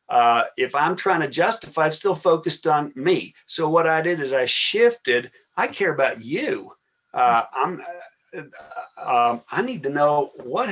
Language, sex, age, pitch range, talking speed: English, male, 50-69, 155-210 Hz, 175 wpm